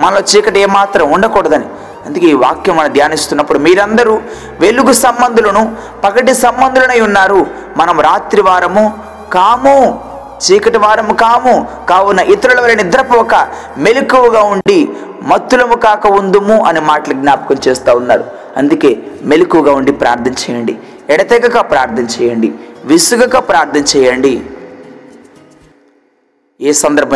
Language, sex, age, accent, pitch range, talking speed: Telugu, male, 20-39, native, 145-235 Hz, 95 wpm